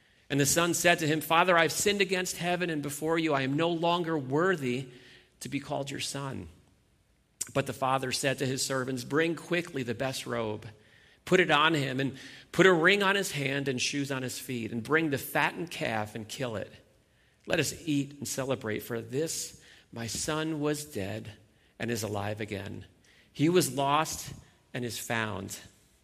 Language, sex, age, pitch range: English, male, 40-59, 115-145 Hz